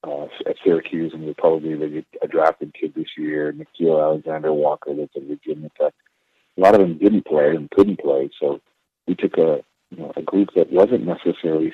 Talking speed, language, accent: 190 wpm, English, American